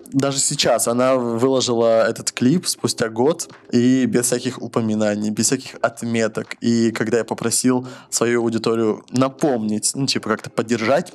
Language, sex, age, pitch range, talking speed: Russian, male, 20-39, 110-130 Hz, 140 wpm